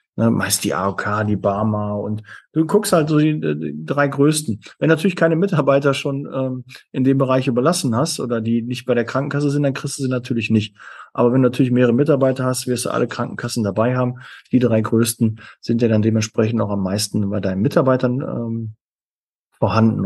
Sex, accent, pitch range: male, German, 110-140 Hz